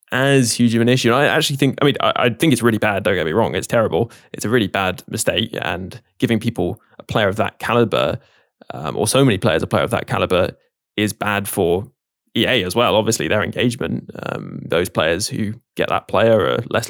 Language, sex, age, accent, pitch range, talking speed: English, male, 20-39, British, 110-125 Hz, 225 wpm